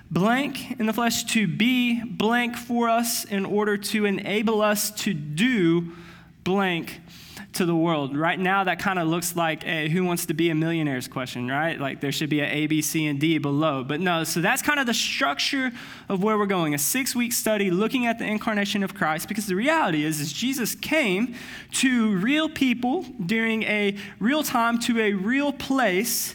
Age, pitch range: 20-39, 160-225 Hz